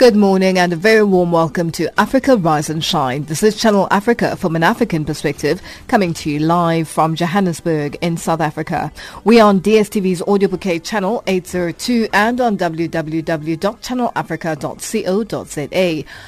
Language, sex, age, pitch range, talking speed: English, female, 30-49, 170-220 Hz, 145 wpm